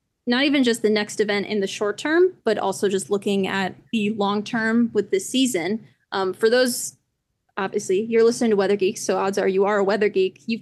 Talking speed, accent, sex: 220 wpm, American, female